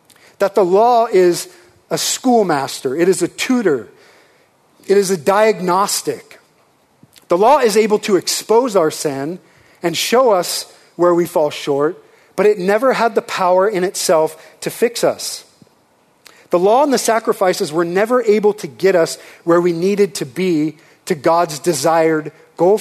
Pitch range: 155-210 Hz